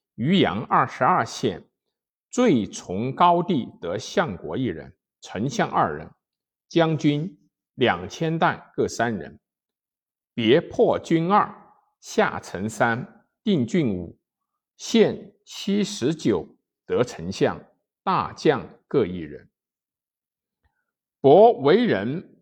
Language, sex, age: Chinese, male, 50-69